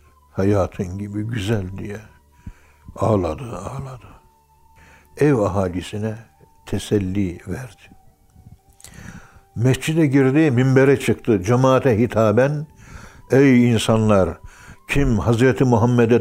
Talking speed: 80 wpm